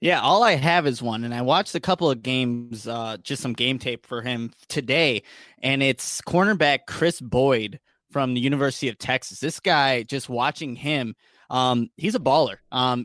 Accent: American